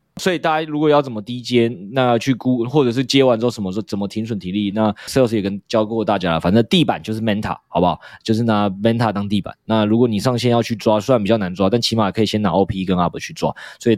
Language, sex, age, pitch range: Chinese, male, 20-39, 105-135 Hz